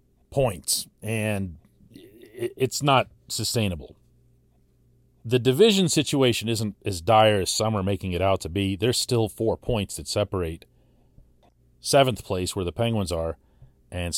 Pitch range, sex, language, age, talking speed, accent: 85-130 Hz, male, English, 40-59, 135 wpm, American